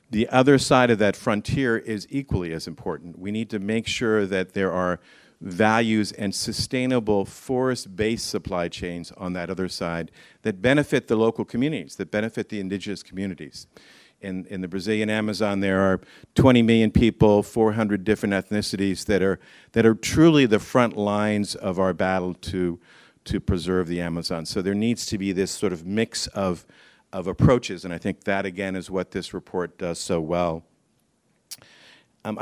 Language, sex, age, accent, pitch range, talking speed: English, male, 50-69, American, 95-115 Hz, 170 wpm